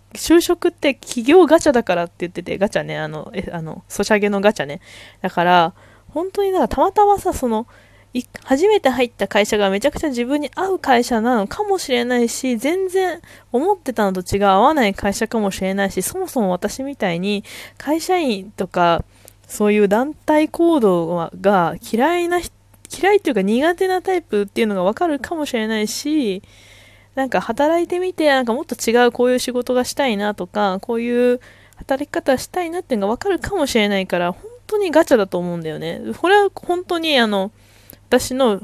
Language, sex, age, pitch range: Japanese, female, 20-39, 180-280 Hz